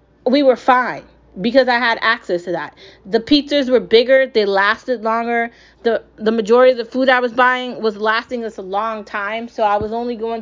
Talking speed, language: 205 wpm, English